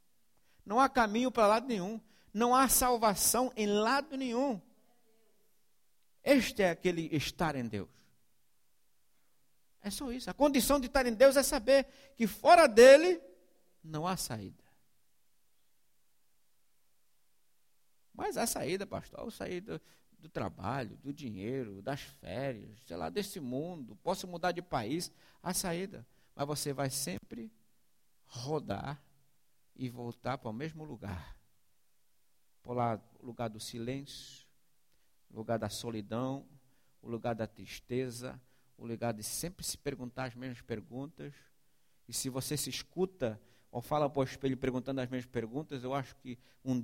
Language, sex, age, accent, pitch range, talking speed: English, male, 60-79, Brazilian, 120-180 Hz, 135 wpm